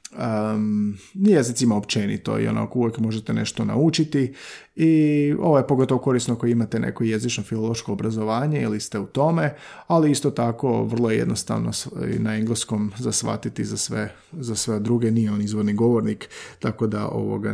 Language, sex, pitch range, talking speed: Croatian, male, 115-140 Hz, 150 wpm